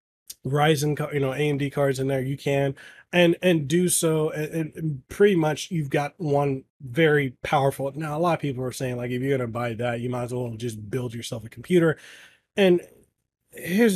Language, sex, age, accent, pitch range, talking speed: English, male, 30-49, American, 125-165 Hz, 200 wpm